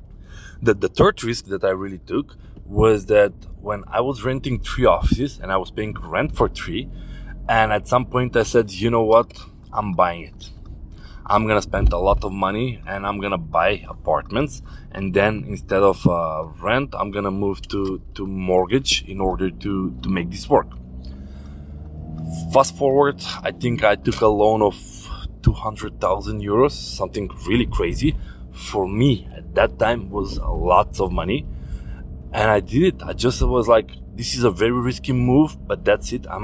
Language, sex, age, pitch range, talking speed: English, male, 20-39, 90-110 Hz, 180 wpm